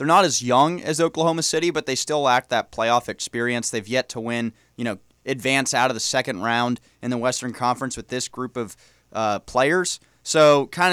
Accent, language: American, English